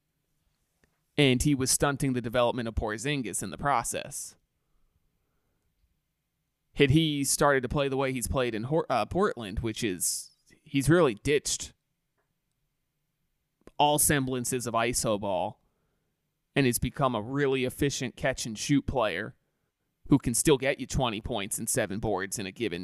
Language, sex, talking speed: English, male, 145 wpm